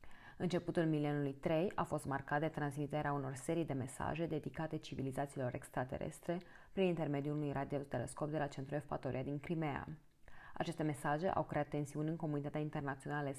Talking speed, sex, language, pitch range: 150 wpm, female, Romanian, 140-160 Hz